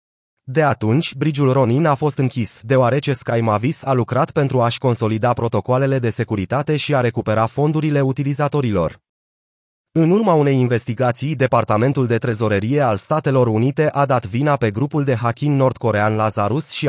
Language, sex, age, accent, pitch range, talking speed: Romanian, male, 30-49, native, 115-145 Hz, 150 wpm